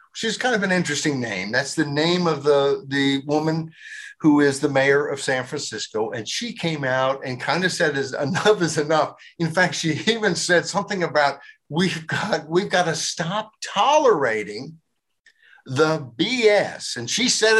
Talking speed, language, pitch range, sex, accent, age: 175 wpm, English, 150-210 Hz, male, American, 50-69